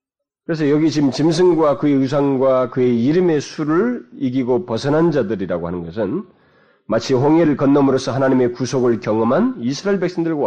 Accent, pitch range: native, 100-155 Hz